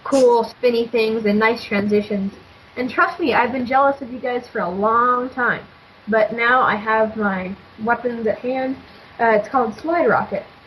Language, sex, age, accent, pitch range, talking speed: English, female, 10-29, American, 210-255 Hz, 175 wpm